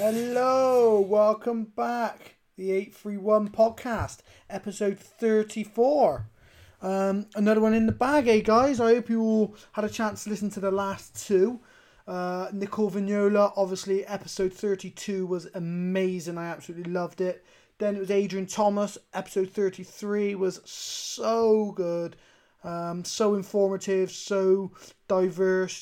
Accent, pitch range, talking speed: British, 180-215 Hz, 130 wpm